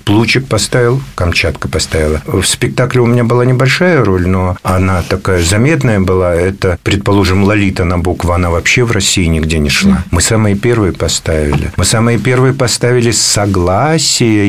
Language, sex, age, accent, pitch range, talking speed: Russian, male, 50-69, native, 95-115 Hz, 155 wpm